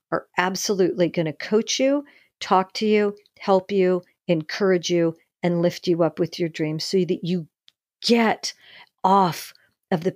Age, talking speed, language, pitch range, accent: 50-69, 160 wpm, English, 175-220 Hz, American